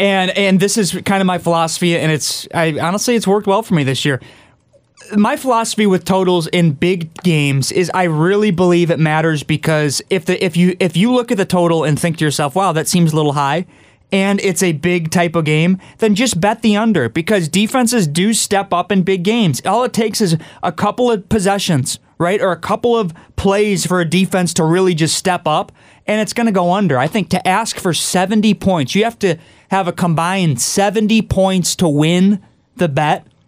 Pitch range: 165-210 Hz